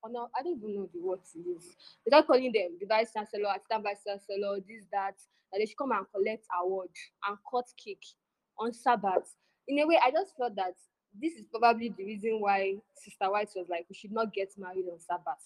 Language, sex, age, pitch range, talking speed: English, female, 10-29, 195-255 Hz, 220 wpm